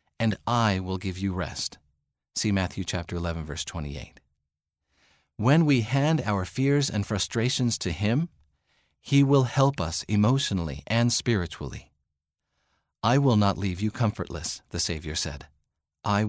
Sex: male